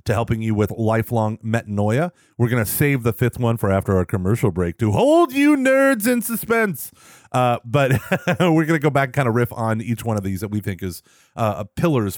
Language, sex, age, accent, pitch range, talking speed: English, male, 30-49, American, 110-145 Hz, 215 wpm